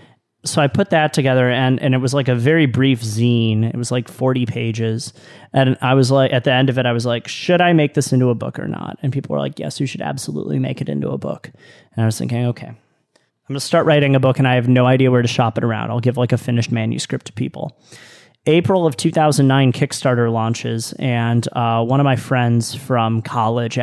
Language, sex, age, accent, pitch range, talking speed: English, male, 30-49, American, 120-145 Hz, 245 wpm